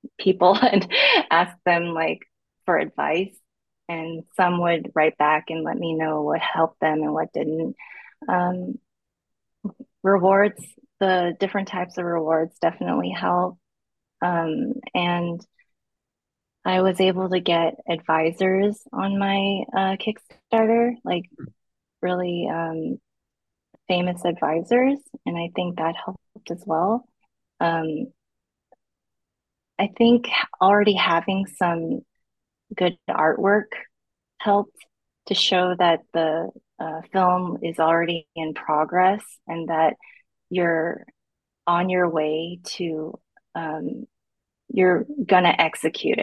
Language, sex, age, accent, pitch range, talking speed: English, female, 20-39, American, 165-195 Hz, 110 wpm